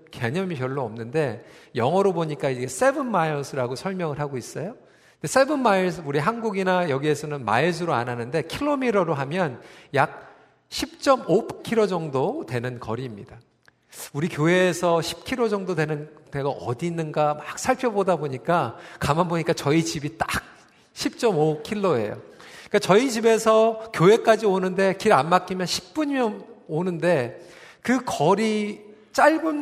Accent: native